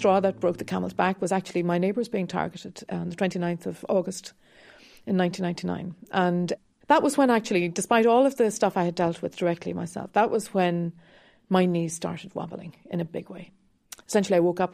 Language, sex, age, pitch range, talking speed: English, female, 40-59, 180-215 Hz, 200 wpm